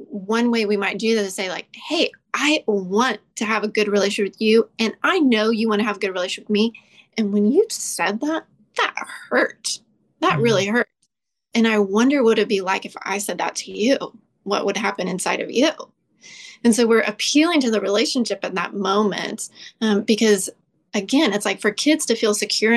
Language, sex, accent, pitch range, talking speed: English, female, American, 205-230 Hz, 210 wpm